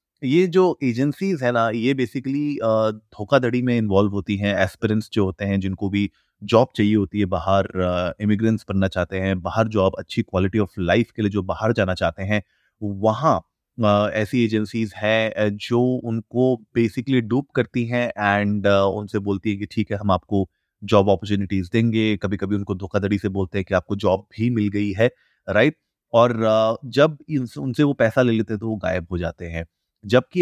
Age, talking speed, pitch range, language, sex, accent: 30-49, 180 wpm, 95-115 Hz, Hindi, male, native